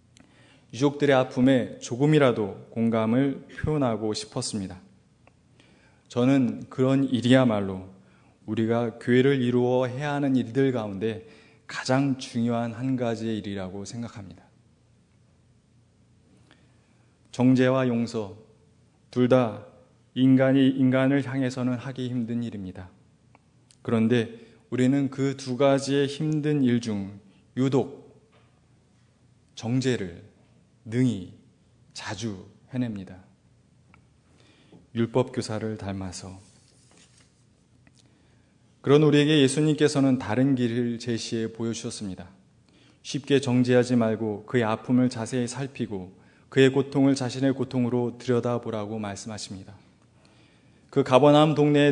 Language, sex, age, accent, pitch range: Korean, male, 20-39, native, 110-135 Hz